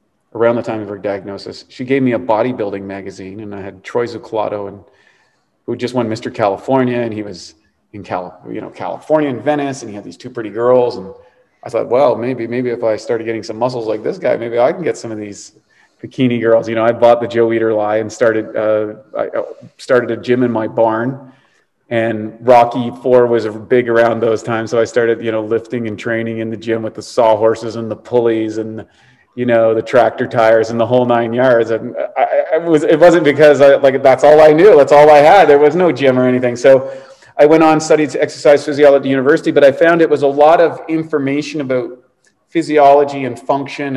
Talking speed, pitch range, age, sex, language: 225 wpm, 115-150 Hz, 30-49, male, English